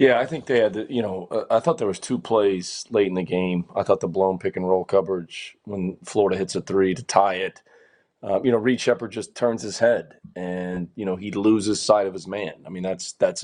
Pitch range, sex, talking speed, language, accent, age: 95-115 Hz, male, 255 wpm, English, American, 20-39